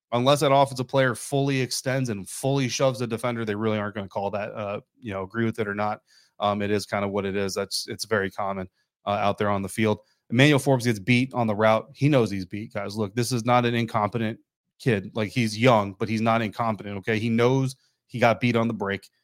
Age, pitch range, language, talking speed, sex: 30-49, 110-130 Hz, English, 245 wpm, male